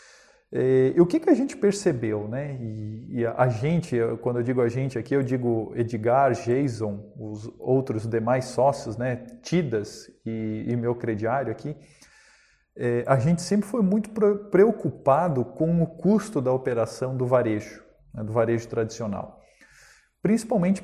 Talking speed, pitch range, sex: 155 wpm, 115-150 Hz, male